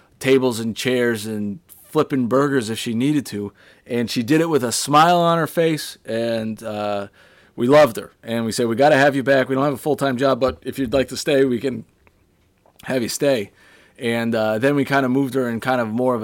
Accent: American